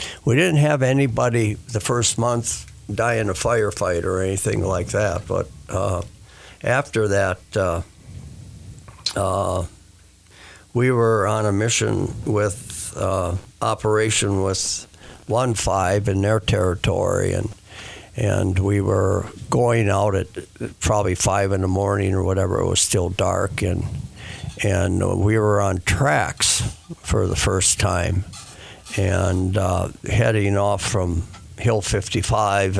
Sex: male